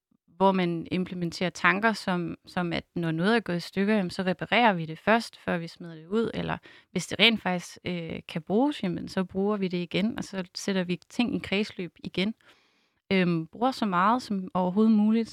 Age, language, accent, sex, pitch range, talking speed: 30-49, Danish, native, female, 175-215 Hz, 190 wpm